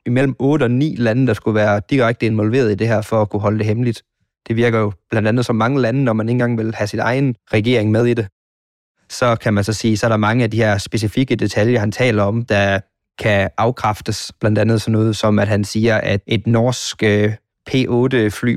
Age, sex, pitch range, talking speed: 20-39, male, 105-120 Hz, 230 wpm